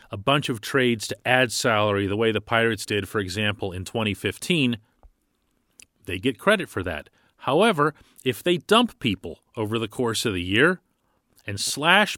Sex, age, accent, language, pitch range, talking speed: male, 40-59, American, English, 105-170 Hz, 170 wpm